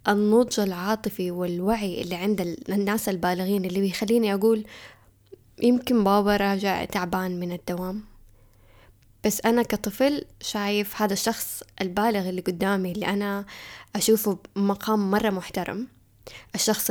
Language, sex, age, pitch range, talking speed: Arabic, female, 10-29, 180-225 Hz, 115 wpm